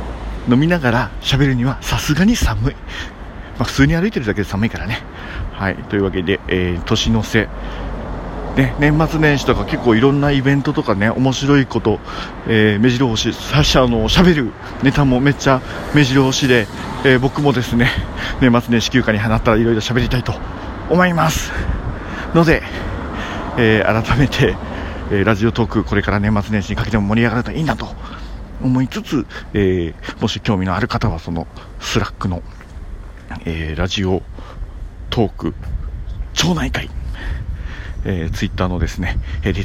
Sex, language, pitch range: male, Japanese, 90-125 Hz